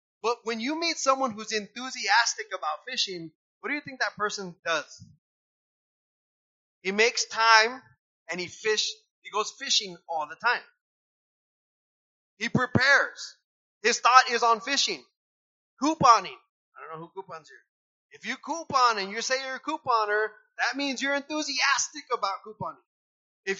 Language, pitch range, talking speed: English, 200-275 Hz, 150 wpm